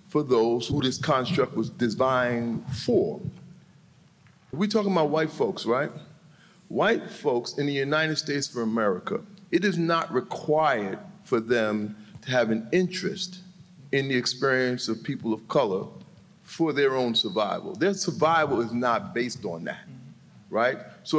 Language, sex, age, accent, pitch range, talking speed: English, male, 40-59, American, 130-195 Hz, 145 wpm